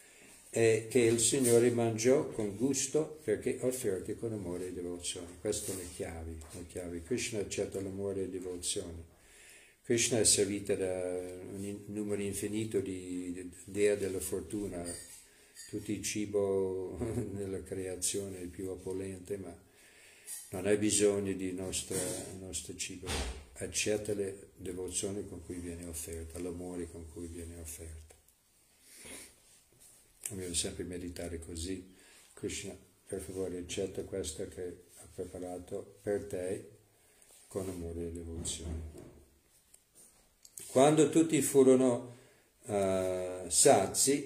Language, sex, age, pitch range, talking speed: Italian, male, 50-69, 90-115 Hz, 120 wpm